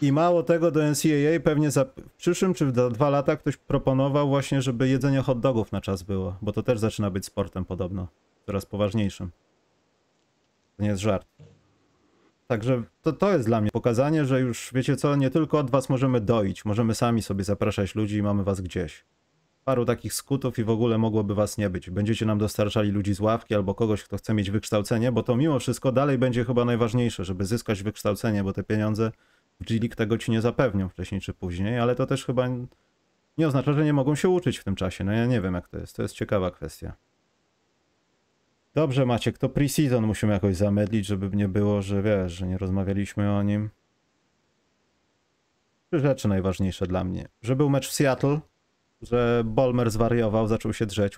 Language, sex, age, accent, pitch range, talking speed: Polish, male, 30-49, native, 100-130 Hz, 190 wpm